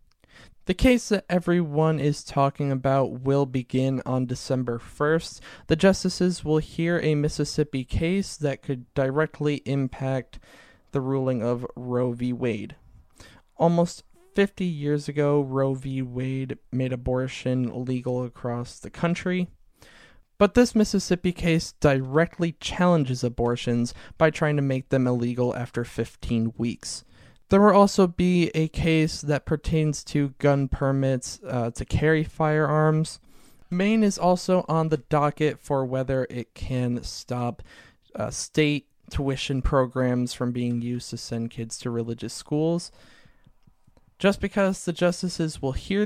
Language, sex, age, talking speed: English, male, 20-39, 135 wpm